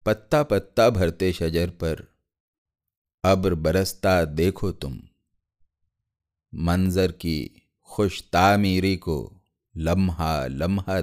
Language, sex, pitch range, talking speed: Urdu, male, 85-110 Hz, 80 wpm